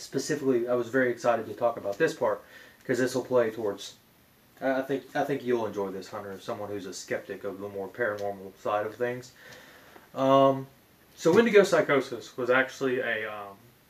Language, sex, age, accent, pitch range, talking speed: English, male, 20-39, American, 115-140 Hz, 180 wpm